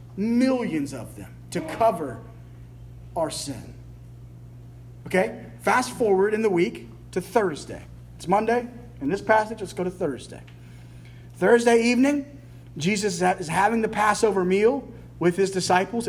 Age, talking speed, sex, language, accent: 40-59, 130 wpm, male, English, American